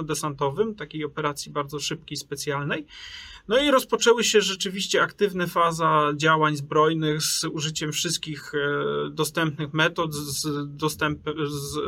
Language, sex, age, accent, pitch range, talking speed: Polish, male, 30-49, native, 150-175 Hz, 105 wpm